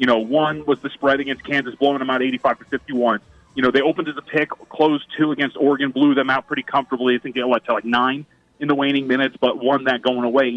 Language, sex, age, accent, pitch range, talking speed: English, male, 30-49, American, 125-155 Hz, 255 wpm